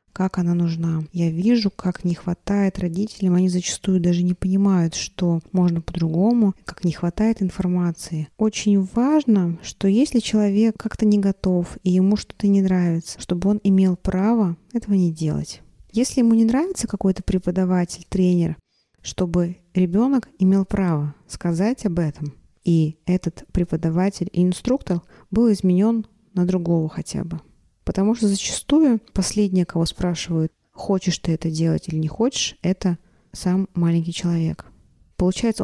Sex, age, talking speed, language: female, 20-39, 140 wpm, Russian